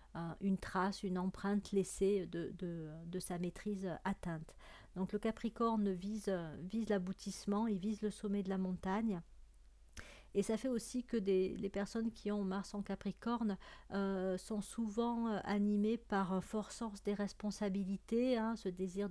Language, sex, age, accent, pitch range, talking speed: French, female, 40-59, French, 180-205 Hz, 155 wpm